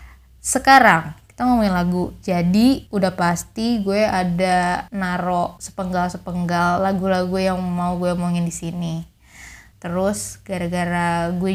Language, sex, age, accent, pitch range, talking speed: Indonesian, female, 20-39, native, 180-245 Hz, 115 wpm